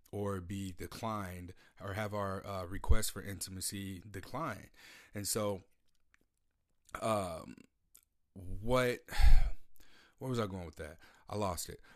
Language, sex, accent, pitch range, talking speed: English, male, American, 90-100 Hz, 120 wpm